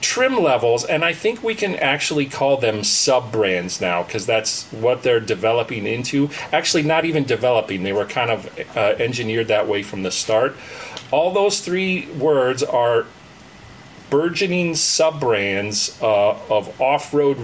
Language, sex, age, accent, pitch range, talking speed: English, male, 40-59, American, 105-150 Hz, 145 wpm